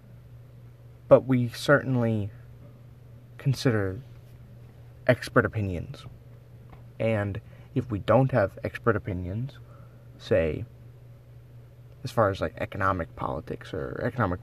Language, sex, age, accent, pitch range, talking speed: English, male, 30-49, American, 115-120 Hz, 90 wpm